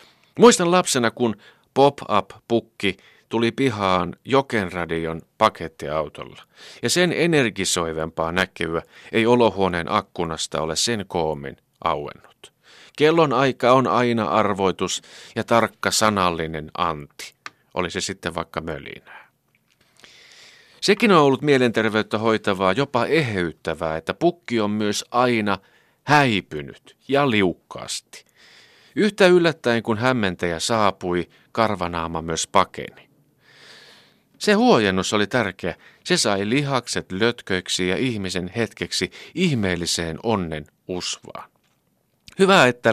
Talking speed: 100 wpm